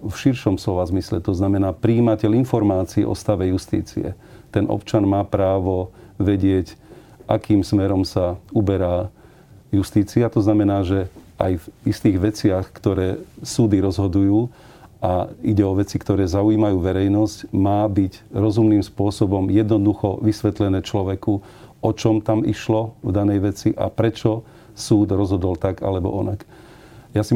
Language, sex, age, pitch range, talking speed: Slovak, male, 40-59, 95-110 Hz, 135 wpm